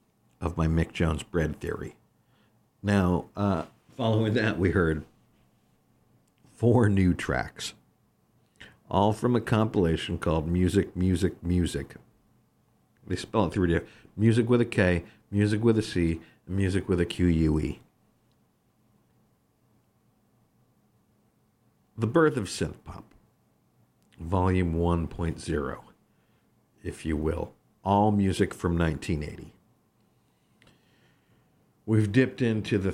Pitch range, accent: 85-110 Hz, American